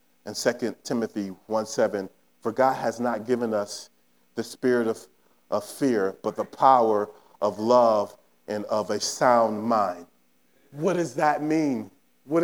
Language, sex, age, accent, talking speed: English, male, 40-59, American, 145 wpm